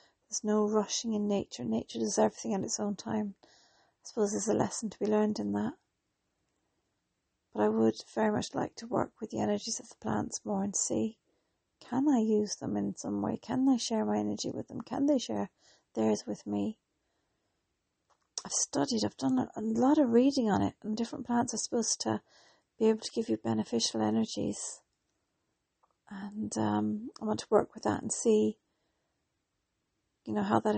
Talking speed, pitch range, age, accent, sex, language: 185 wpm, 165-225 Hz, 40-59, British, female, English